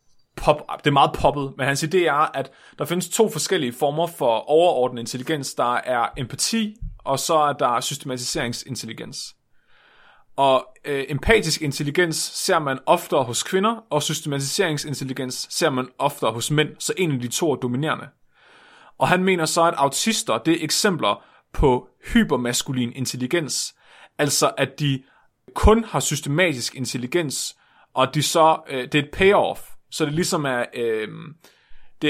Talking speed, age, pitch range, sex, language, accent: 150 wpm, 30-49, 130-170 Hz, male, Danish, native